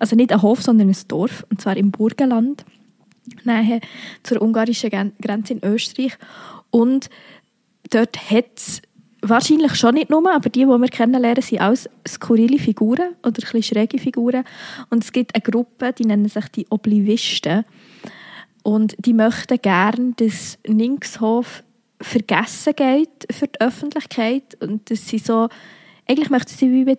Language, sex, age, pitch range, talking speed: German, female, 20-39, 210-250 Hz, 150 wpm